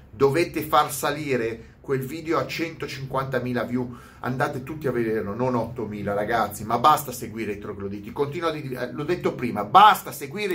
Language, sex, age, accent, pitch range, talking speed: Italian, male, 30-49, native, 120-180 Hz, 150 wpm